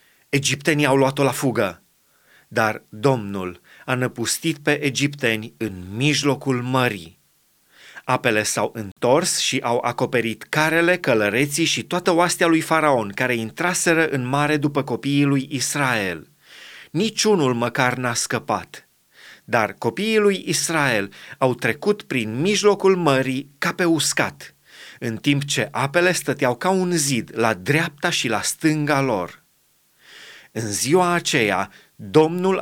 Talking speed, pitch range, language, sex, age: 125 wpm, 120-155 Hz, Romanian, male, 30-49